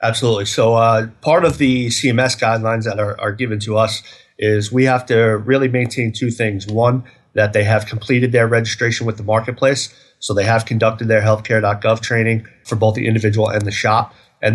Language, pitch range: English, 110-125 Hz